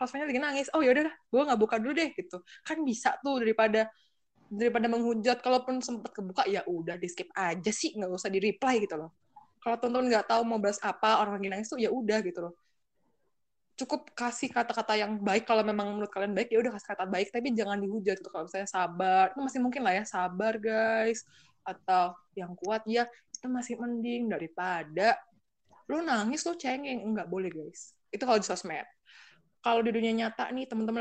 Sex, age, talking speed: female, 20-39, 195 wpm